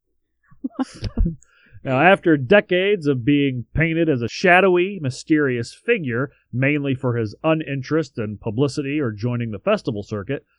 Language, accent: English, American